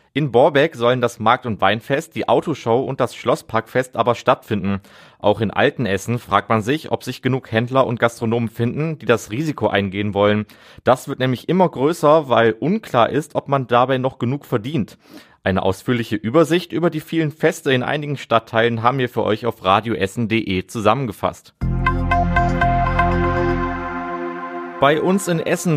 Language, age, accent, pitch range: German, 30-49, German, 105-140 Hz